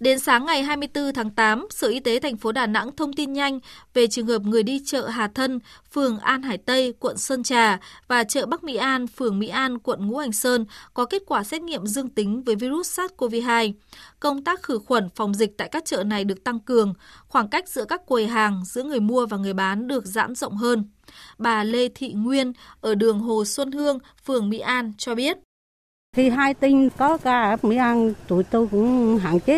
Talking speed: 220 wpm